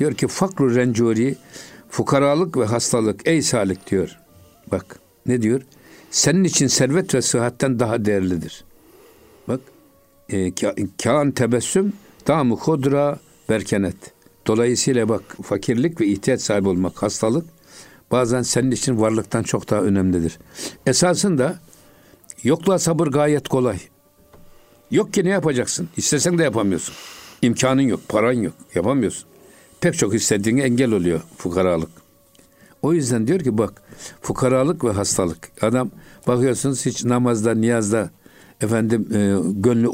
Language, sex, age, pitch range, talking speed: Turkish, male, 60-79, 105-135 Hz, 120 wpm